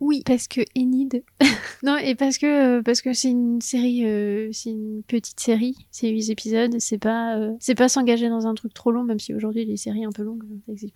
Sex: female